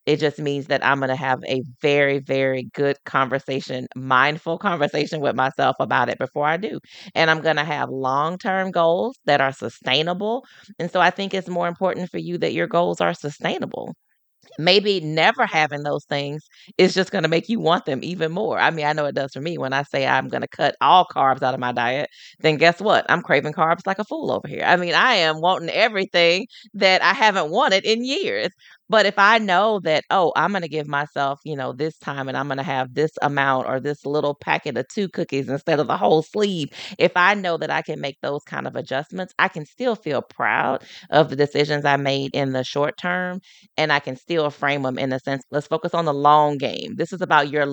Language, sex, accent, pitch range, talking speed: English, female, American, 140-180 Hz, 225 wpm